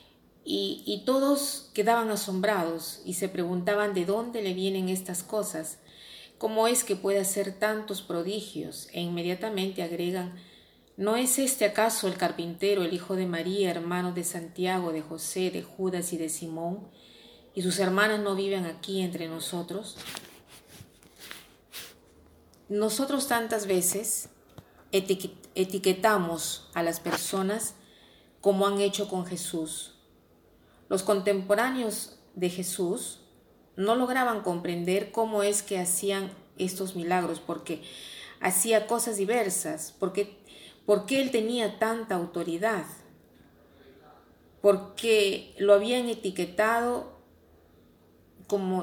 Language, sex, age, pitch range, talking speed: Spanish, female, 40-59, 175-210 Hz, 115 wpm